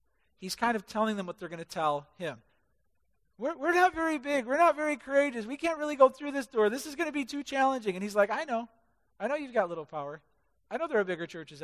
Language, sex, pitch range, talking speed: English, male, 155-225 Hz, 265 wpm